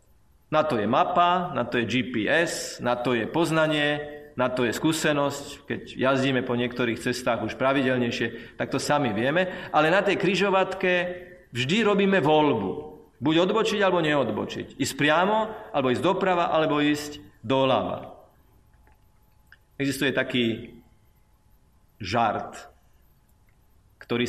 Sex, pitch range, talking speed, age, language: male, 125-165 Hz, 125 wpm, 40-59, Slovak